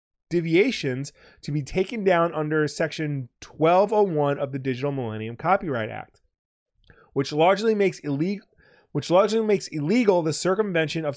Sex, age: male, 30-49